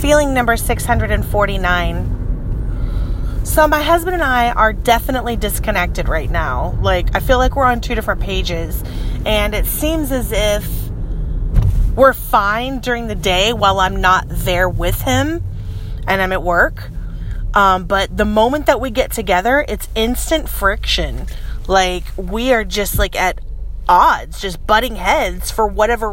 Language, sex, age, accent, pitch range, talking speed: English, female, 30-49, American, 190-250 Hz, 150 wpm